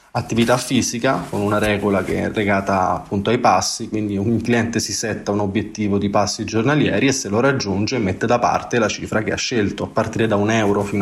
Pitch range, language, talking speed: 105-130 Hz, Italian, 215 wpm